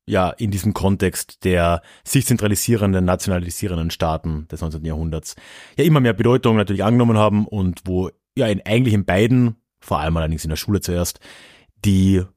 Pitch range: 90-120 Hz